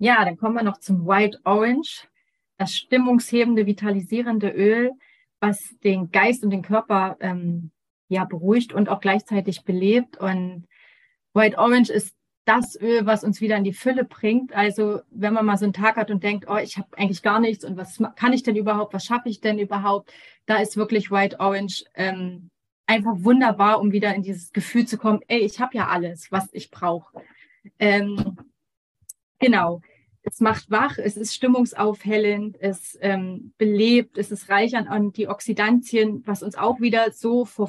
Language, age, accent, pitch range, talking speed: German, 30-49, German, 200-230 Hz, 175 wpm